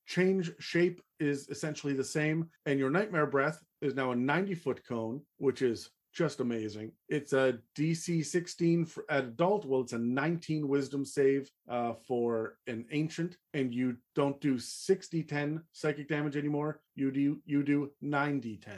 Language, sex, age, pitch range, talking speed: English, male, 40-59, 120-150 Hz, 155 wpm